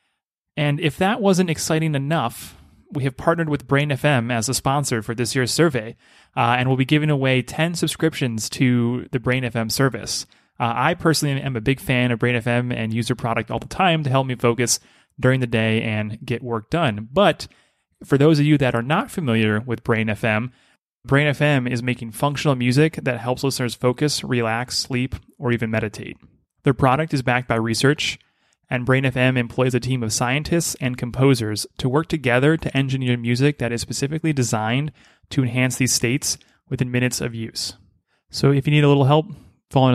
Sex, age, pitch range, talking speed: male, 30-49, 120-145 Hz, 185 wpm